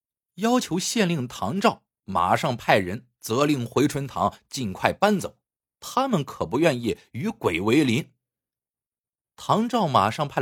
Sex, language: male, Chinese